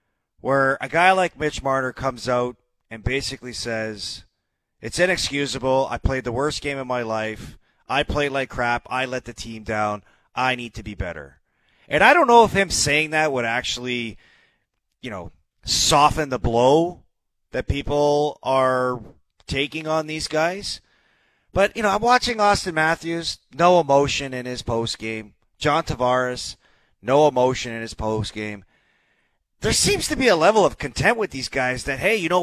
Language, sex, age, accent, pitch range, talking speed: English, male, 30-49, American, 125-175 Hz, 170 wpm